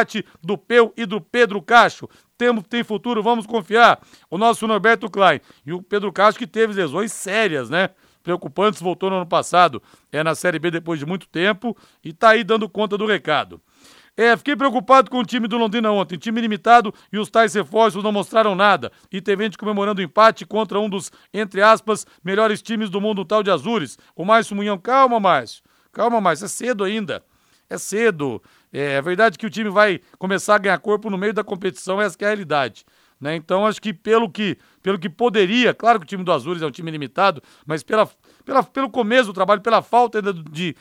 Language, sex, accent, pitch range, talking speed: Portuguese, male, Brazilian, 190-230 Hz, 205 wpm